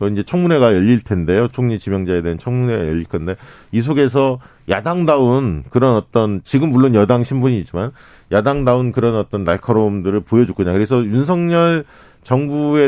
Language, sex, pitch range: Korean, male, 110-150 Hz